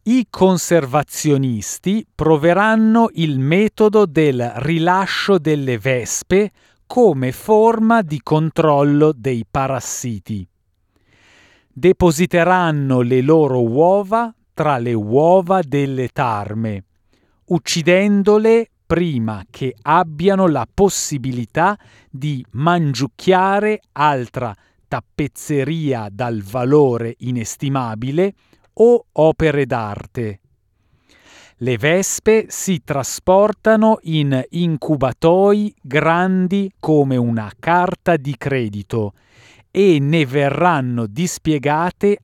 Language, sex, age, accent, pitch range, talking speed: Italian, male, 40-59, native, 125-180 Hz, 80 wpm